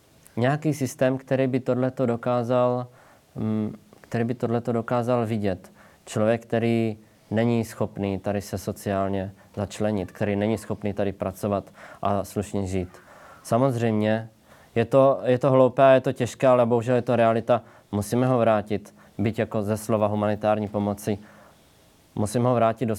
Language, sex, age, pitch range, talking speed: Slovak, male, 20-39, 100-115 Hz, 140 wpm